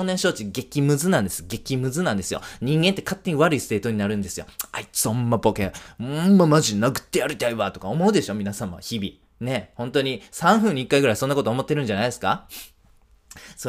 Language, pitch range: Japanese, 105-155 Hz